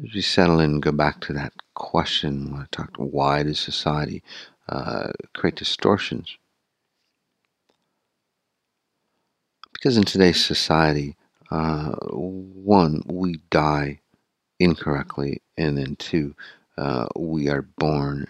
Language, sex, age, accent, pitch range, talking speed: English, male, 50-69, American, 70-85 Hz, 120 wpm